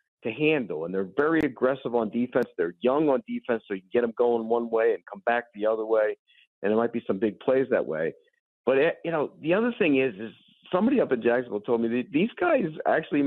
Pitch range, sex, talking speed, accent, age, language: 120-185 Hz, male, 240 wpm, American, 50-69, English